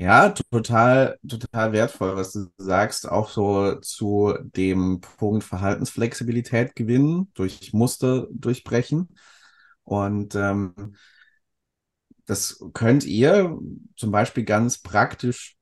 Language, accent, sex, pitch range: German, German, male, 100-130 Hz